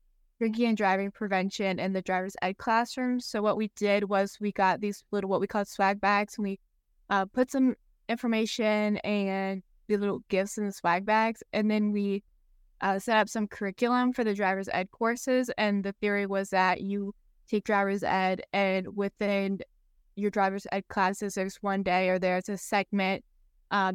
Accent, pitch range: American, 185-210 Hz